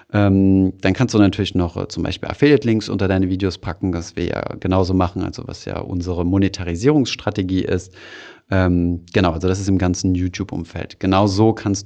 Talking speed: 175 wpm